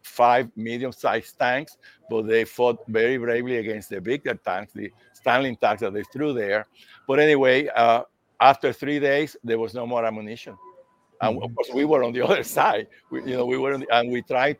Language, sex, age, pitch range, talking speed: English, male, 60-79, 115-135 Hz, 200 wpm